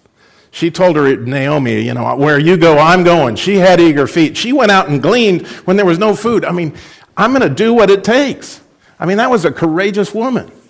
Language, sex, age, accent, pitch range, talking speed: English, male, 50-69, American, 135-195 Hz, 230 wpm